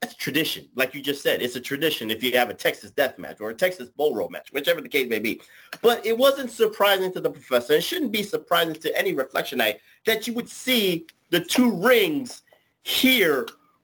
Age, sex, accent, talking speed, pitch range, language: 30-49, male, American, 215 wpm, 160-245 Hz, English